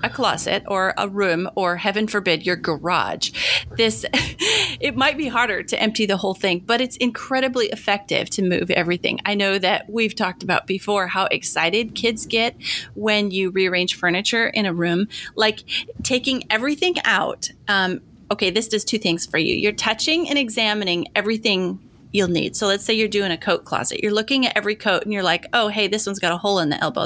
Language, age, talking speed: English, 30-49, 200 wpm